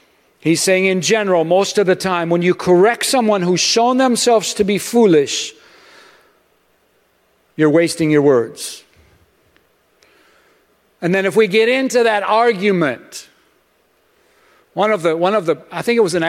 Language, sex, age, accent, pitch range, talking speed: English, male, 50-69, American, 165-210 Hz, 150 wpm